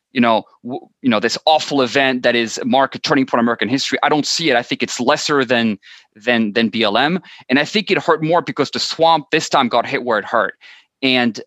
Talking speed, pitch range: 235 wpm, 120-155 Hz